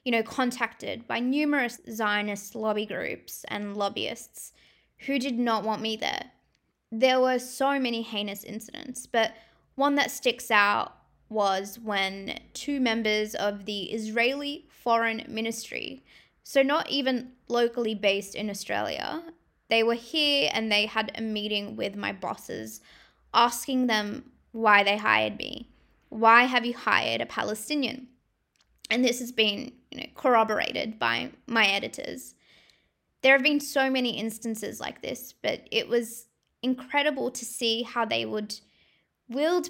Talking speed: 140 wpm